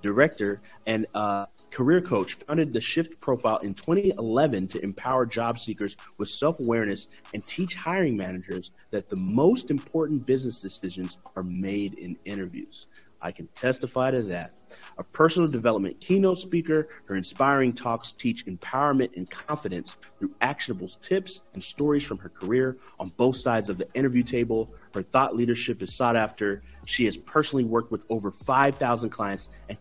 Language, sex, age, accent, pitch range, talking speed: English, male, 30-49, American, 110-150 Hz, 160 wpm